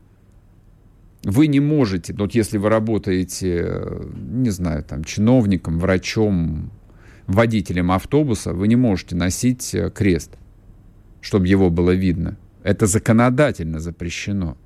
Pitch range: 90-110 Hz